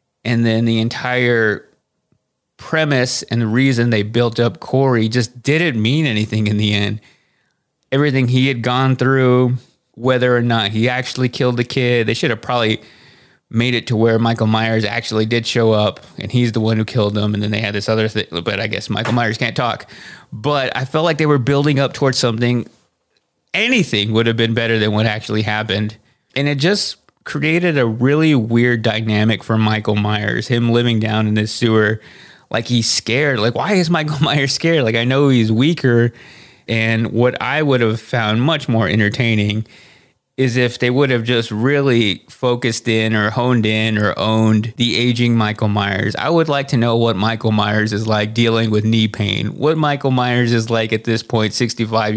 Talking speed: 190 wpm